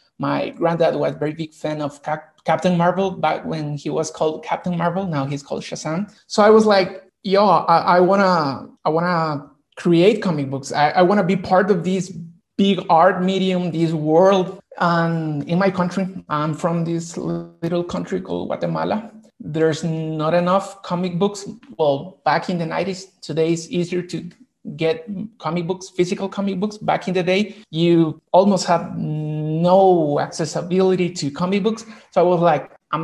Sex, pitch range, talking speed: male, 160-190 Hz, 175 wpm